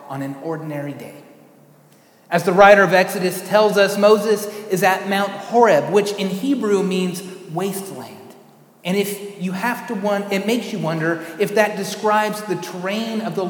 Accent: American